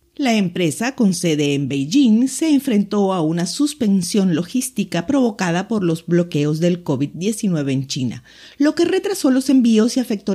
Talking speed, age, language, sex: 155 wpm, 50-69, Spanish, female